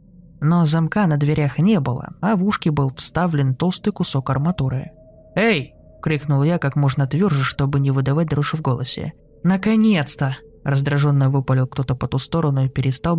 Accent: native